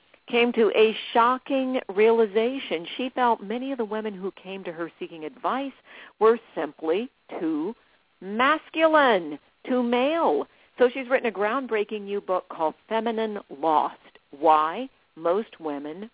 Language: English